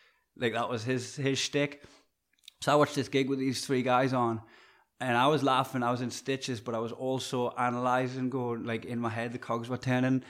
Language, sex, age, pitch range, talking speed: English, male, 20-39, 110-125 Hz, 220 wpm